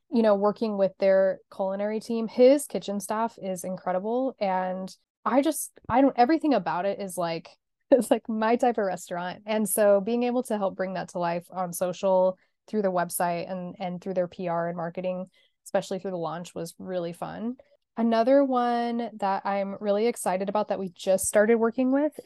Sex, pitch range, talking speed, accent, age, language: female, 185-215 Hz, 190 wpm, American, 10-29, English